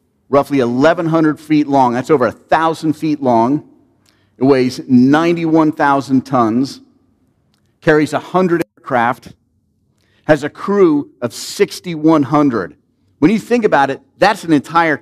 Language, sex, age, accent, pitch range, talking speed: English, male, 50-69, American, 120-175 Hz, 115 wpm